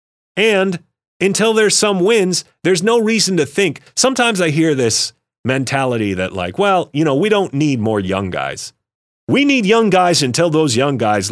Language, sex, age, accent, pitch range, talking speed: English, male, 40-59, American, 115-165 Hz, 180 wpm